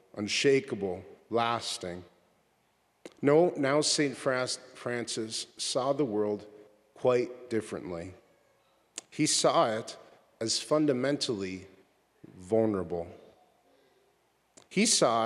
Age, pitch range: 50-69, 100-135 Hz